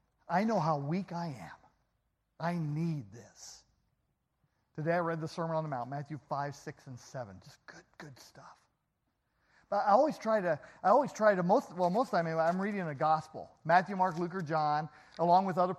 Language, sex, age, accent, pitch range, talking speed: English, male, 50-69, American, 140-205 Hz, 195 wpm